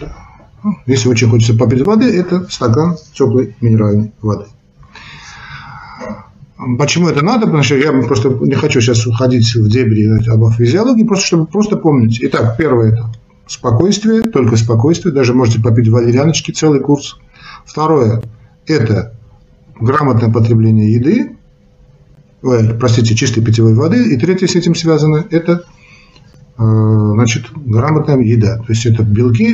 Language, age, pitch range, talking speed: Russian, 50-69, 115-155 Hz, 140 wpm